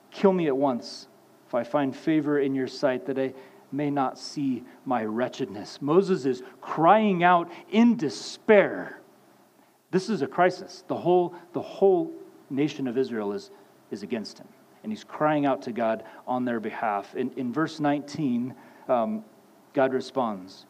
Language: English